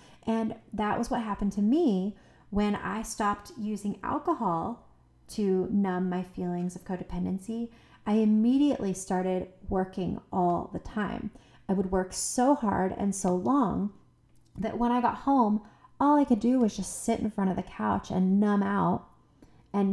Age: 30-49